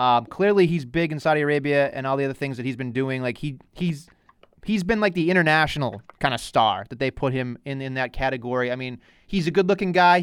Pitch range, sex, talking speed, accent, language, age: 135-175 Hz, male, 245 wpm, American, English, 30-49